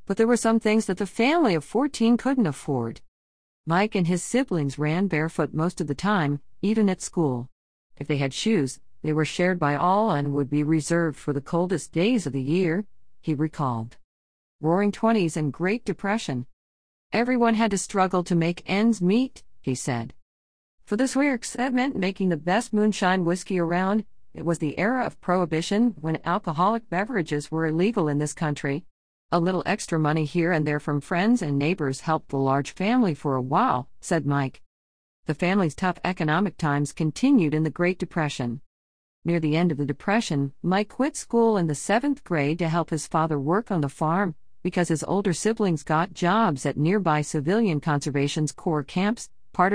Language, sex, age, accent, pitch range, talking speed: English, female, 50-69, American, 145-195 Hz, 180 wpm